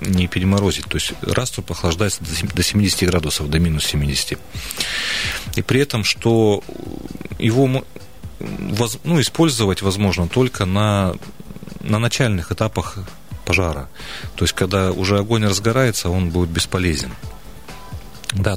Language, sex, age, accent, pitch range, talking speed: Russian, male, 40-59, native, 85-110 Hz, 115 wpm